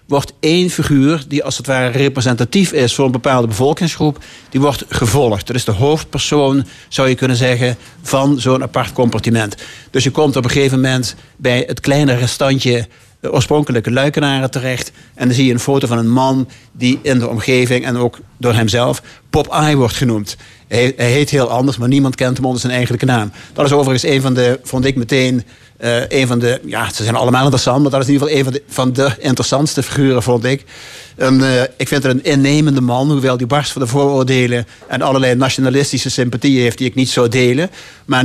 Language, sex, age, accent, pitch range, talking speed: Dutch, male, 50-69, Dutch, 125-140 Hz, 210 wpm